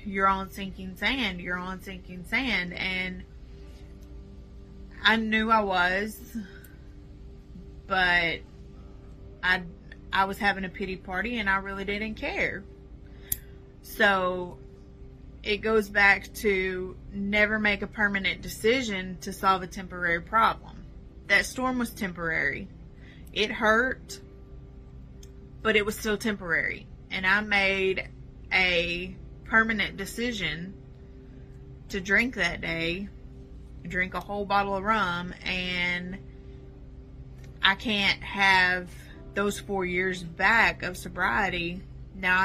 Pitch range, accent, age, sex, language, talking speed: 175-205 Hz, American, 20-39, female, English, 110 wpm